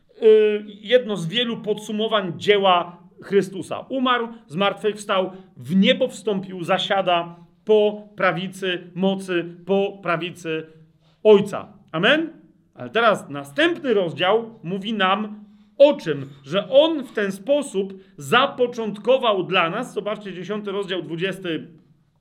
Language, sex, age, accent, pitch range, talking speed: Polish, male, 40-59, native, 180-235 Hz, 110 wpm